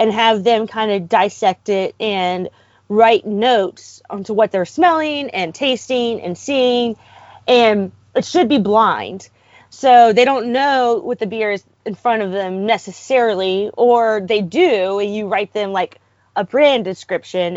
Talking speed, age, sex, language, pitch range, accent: 155 wpm, 30-49, female, English, 190-255 Hz, American